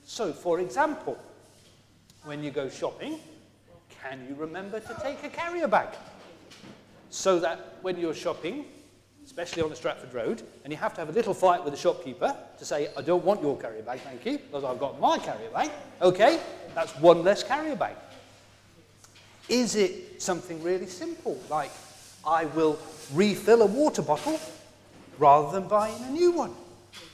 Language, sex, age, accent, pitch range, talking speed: English, male, 40-59, British, 165-275 Hz, 170 wpm